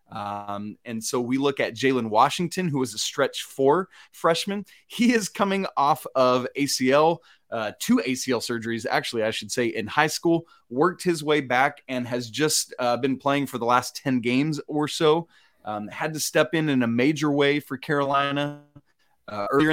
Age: 30-49